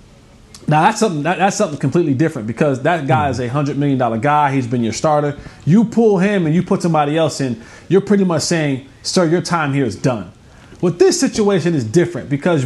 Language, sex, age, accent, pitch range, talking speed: English, male, 20-39, American, 140-185 Hz, 215 wpm